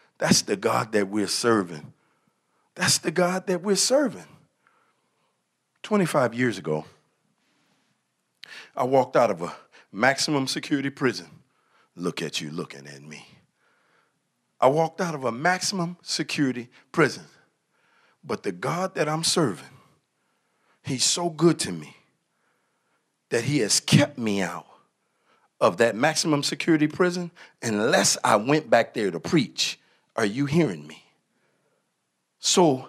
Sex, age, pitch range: male, 50-69, 145-215 Hz